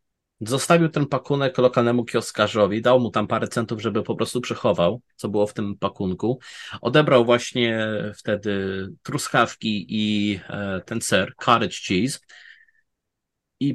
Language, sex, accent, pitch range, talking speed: Polish, male, native, 110-150 Hz, 125 wpm